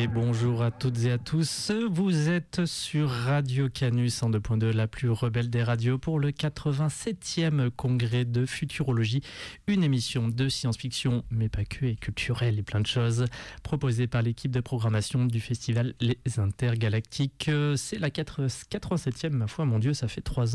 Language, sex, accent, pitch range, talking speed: French, male, French, 115-145 Hz, 170 wpm